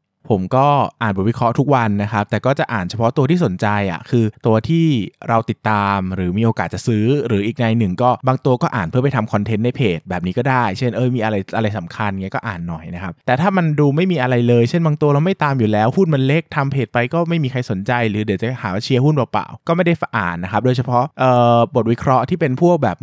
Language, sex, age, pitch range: Thai, male, 20-39, 105-135 Hz